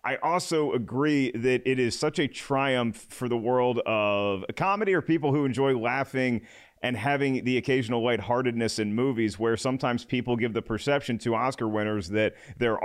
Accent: American